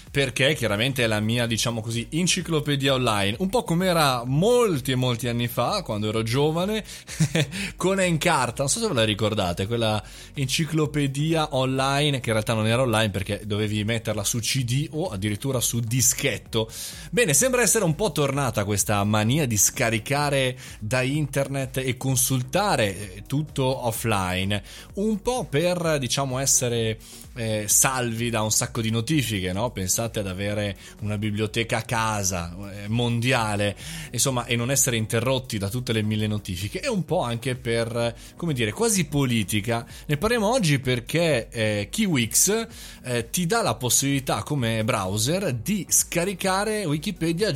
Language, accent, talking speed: Italian, native, 150 wpm